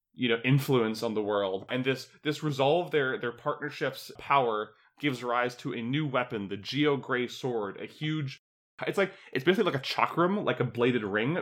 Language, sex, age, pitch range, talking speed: English, male, 20-39, 115-140 Hz, 195 wpm